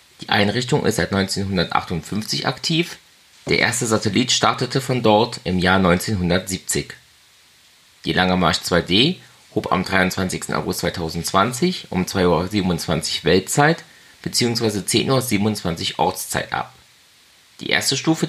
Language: German